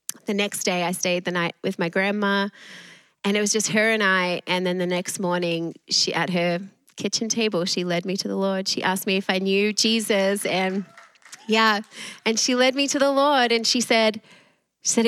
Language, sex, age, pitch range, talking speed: English, female, 20-39, 175-220 Hz, 215 wpm